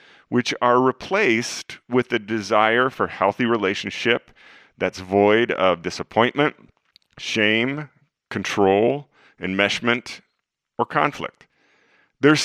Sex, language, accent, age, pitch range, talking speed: male, English, American, 40-59, 105-140 Hz, 90 wpm